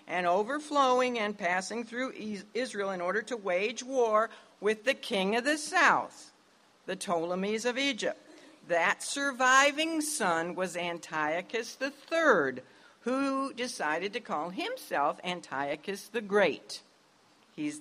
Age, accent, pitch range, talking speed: 60-79, American, 170-245 Hz, 120 wpm